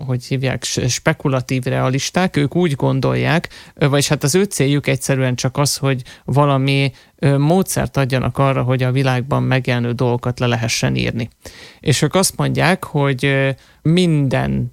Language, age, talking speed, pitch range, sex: Hungarian, 30-49, 140 wpm, 125-140 Hz, male